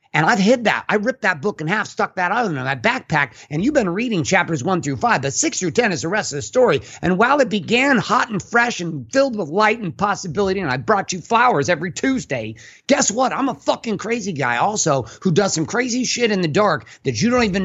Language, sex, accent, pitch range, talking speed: English, male, American, 155-225 Hz, 250 wpm